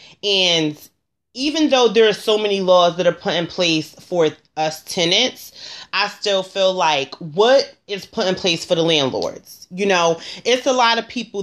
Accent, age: American, 30-49